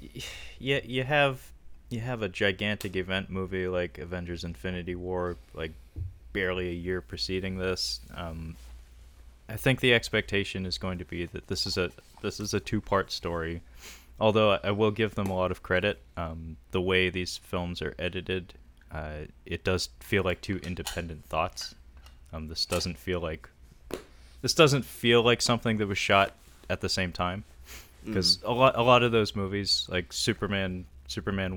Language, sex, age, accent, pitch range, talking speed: English, male, 20-39, American, 80-100 Hz, 170 wpm